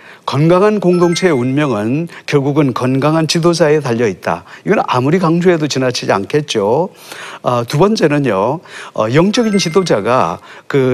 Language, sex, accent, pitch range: Korean, male, native, 130-185 Hz